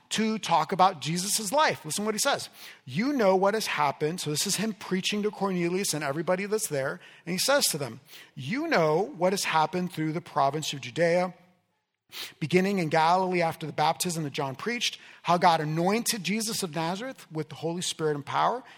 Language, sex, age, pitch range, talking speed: English, male, 40-59, 155-215 Hz, 200 wpm